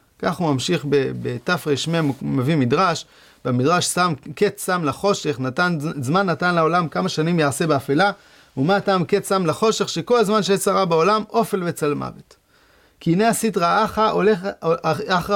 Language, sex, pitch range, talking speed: English, male, 165-220 Hz, 145 wpm